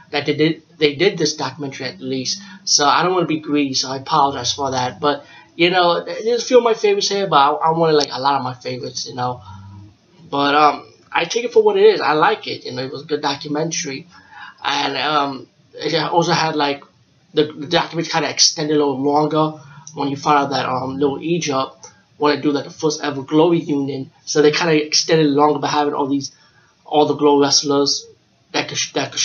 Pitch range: 135-160 Hz